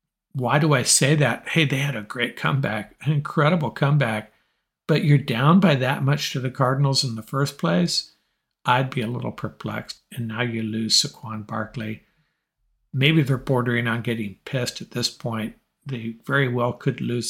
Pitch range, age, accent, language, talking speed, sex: 120-150 Hz, 50-69, American, English, 180 wpm, male